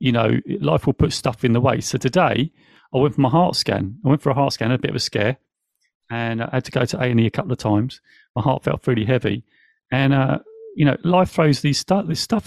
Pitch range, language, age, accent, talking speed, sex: 130-160 Hz, English, 40-59, British, 265 wpm, male